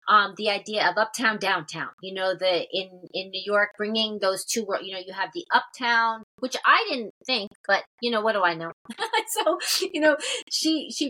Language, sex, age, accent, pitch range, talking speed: English, female, 30-49, American, 205-255 Hz, 205 wpm